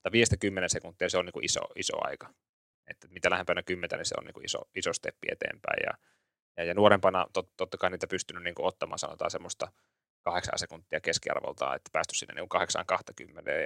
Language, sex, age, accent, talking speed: Finnish, male, 20-39, native, 185 wpm